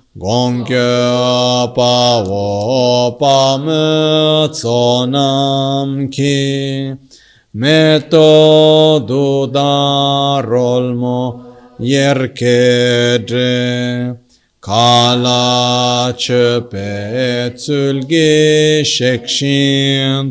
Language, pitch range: Italian, 120-140 Hz